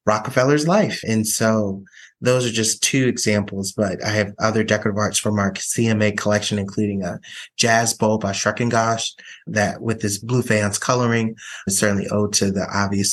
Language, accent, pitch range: English, American, 100-110 Hz